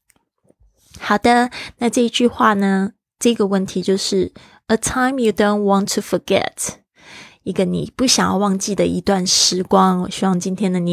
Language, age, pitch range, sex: Chinese, 20-39, 185-215 Hz, female